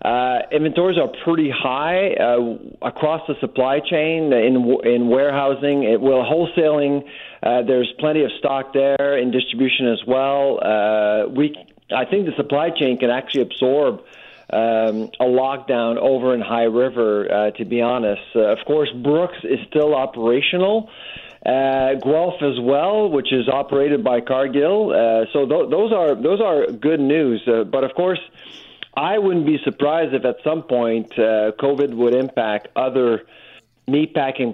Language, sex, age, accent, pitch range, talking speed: English, male, 50-69, American, 125-155 Hz, 155 wpm